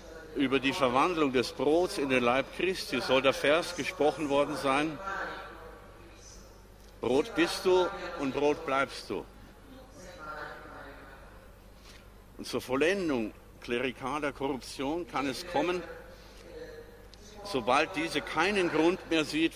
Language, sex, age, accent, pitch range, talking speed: Italian, male, 60-79, German, 130-175 Hz, 110 wpm